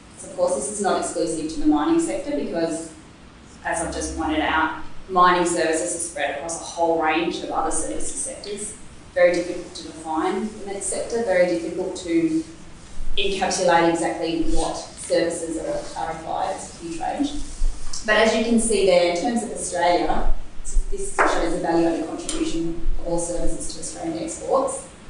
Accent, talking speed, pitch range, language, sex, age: Australian, 165 wpm, 165-230 Hz, English, female, 30-49